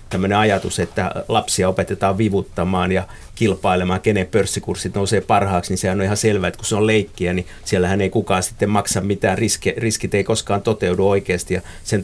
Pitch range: 95-110 Hz